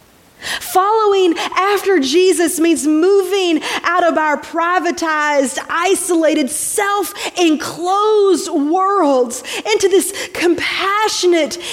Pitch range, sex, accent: 245-345 Hz, female, American